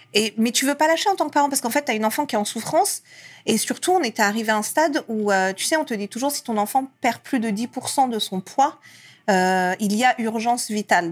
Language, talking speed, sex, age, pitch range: French, 290 wpm, female, 40-59, 195-255 Hz